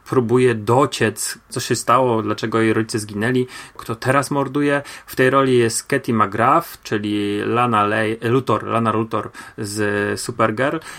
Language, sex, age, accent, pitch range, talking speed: Polish, male, 30-49, native, 115-130 Hz, 140 wpm